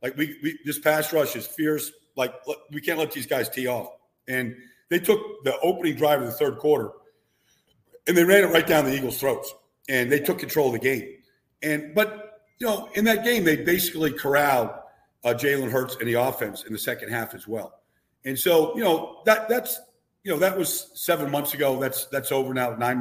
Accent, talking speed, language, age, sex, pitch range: American, 215 wpm, English, 50-69, male, 130-175 Hz